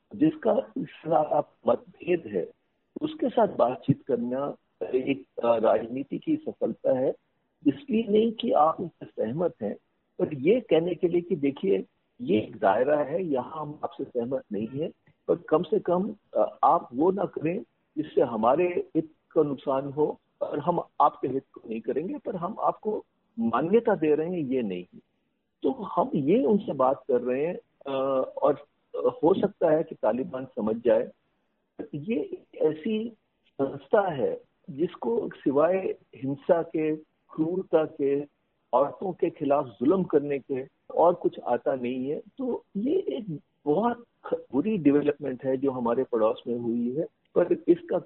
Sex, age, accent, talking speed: male, 50-69, native, 150 wpm